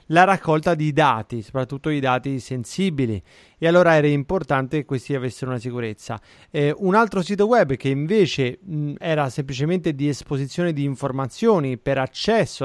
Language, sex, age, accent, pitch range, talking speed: Italian, male, 30-49, native, 135-175 Hz, 150 wpm